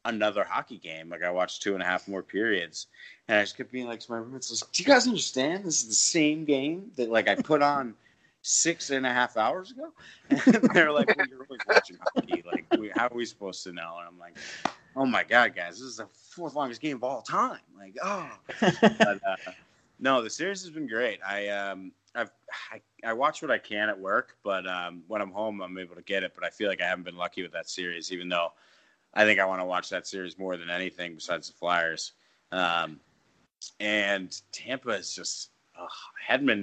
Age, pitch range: 30-49, 90-120 Hz